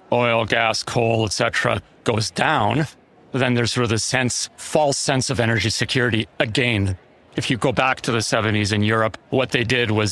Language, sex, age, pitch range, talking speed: English, male, 40-59, 100-120 Hz, 190 wpm